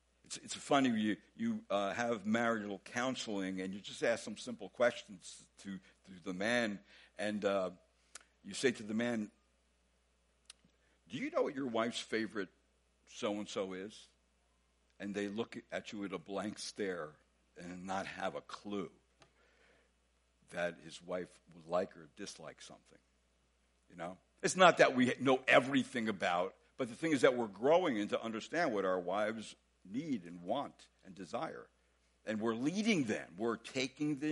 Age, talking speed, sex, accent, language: 60-79, 165 wpm, male, American, English